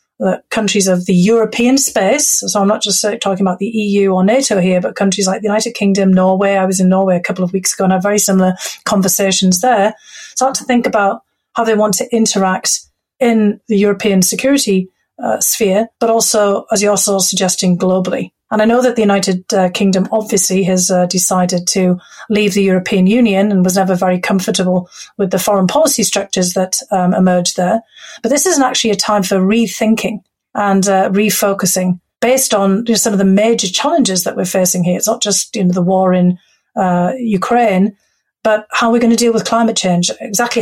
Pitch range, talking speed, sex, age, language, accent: 185-225 Hz, 200 wpm, female, 30-49, English, British